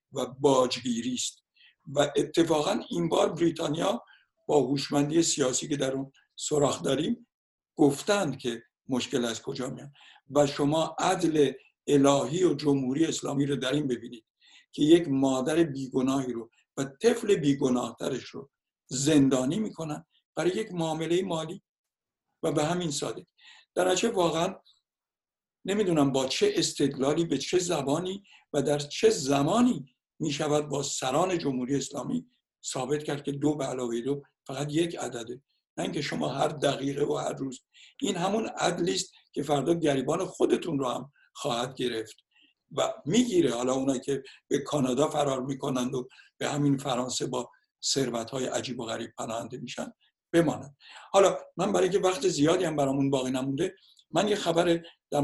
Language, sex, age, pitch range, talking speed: Persian, male, 60-79, 135-170 Hz, 145 wpm